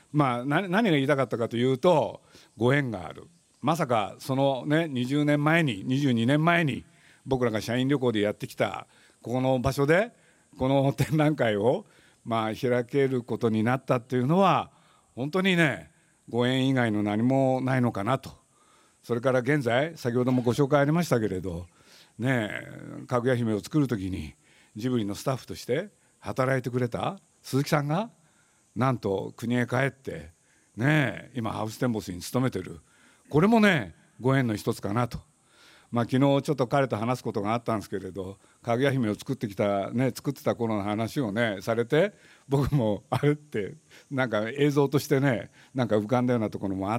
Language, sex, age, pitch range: Japanese, male, 50-69, 115-145 Hz